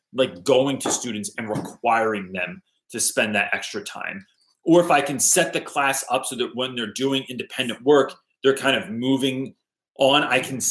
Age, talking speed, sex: 30-49, 190 wpm, male